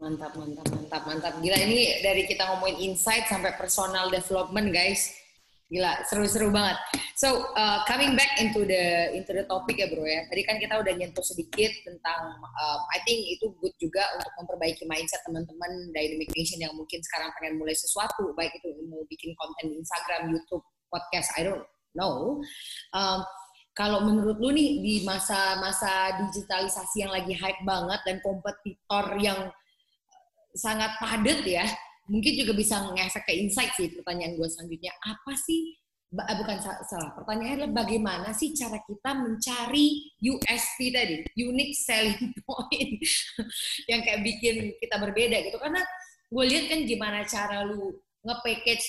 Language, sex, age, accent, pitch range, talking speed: Indonesian, female, 20-39, native, 180-235 Hz, 155 wpm